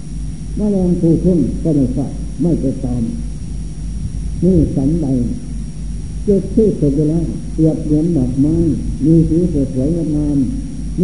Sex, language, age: male, Thai, 70-89